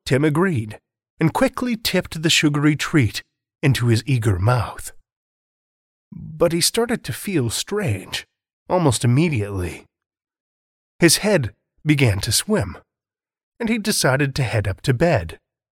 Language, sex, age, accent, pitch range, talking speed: English, male, 30-49, American, 110-170 Hz, 125 wpm